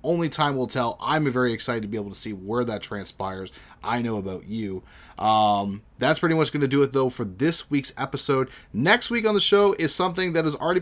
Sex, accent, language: male, American, English